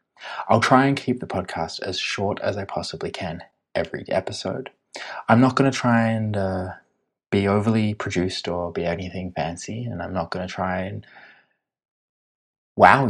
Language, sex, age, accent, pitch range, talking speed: English, male, 20-39, Australian, 90-115 Hz, 165 wpm